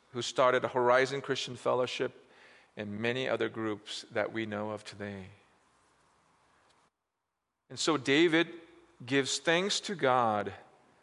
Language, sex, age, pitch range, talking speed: English, male, 40-59, 125-185 Hz, 120 wpm